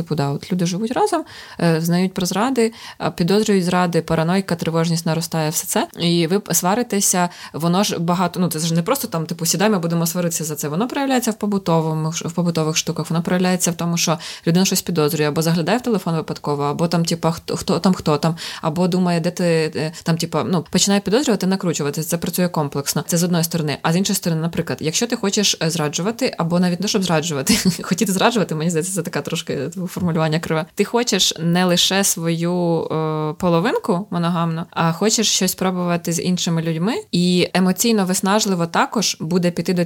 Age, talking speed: 20-39, 185 wpm